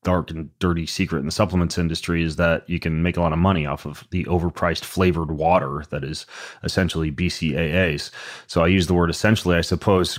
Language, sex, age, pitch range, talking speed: English, male, 30-49, 85-95 Hz, 205 wpm